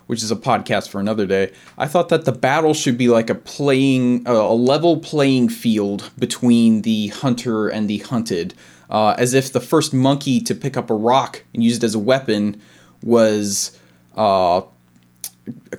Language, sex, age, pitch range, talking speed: English, male, 20-39, 105-135 Hz, 180 wpm